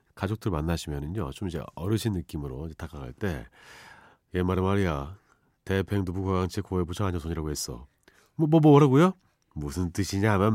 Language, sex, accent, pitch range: Korean, male, native, 85-125 Hz